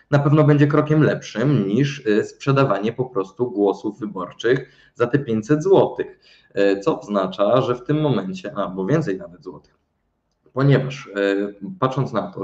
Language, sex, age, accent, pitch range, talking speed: Polish, male, 20-39, native, 100-135 Hz, 140 wpm